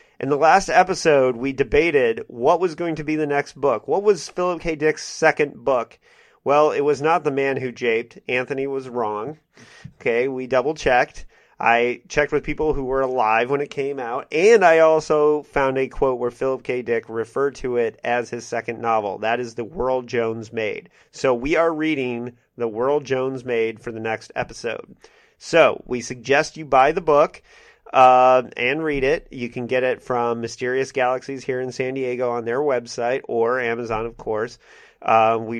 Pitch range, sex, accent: 115-145 Hz, male, American